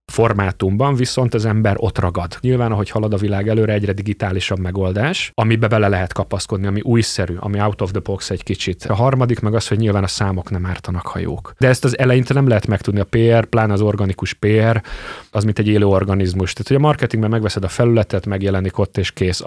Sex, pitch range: male, 95-110 Hz